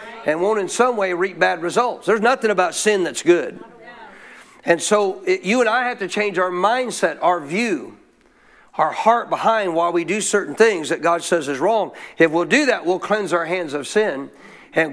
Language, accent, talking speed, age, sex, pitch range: English, American, 200 wpm, 50-69, male, 175-225 Hz